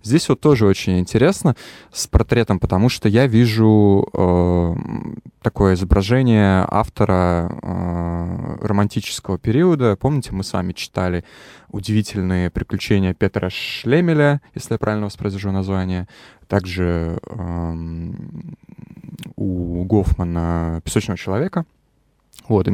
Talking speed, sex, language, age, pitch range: 105 wpm, male, Russian, 20-39, 90-115 Hz